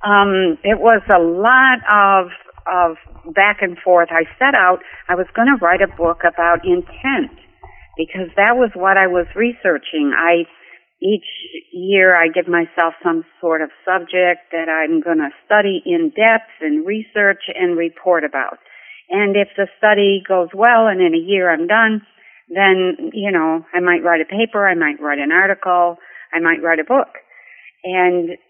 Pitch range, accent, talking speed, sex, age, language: 175-215 Hz, American, 175 wpm, female, 60-79, English